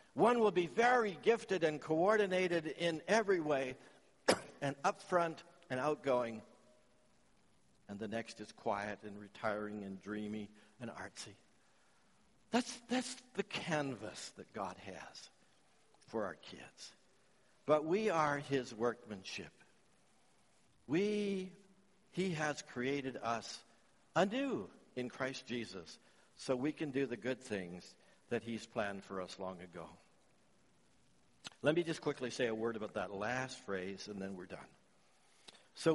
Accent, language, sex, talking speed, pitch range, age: American, English, male, 130 wpm, 105-170 Hz, 60-79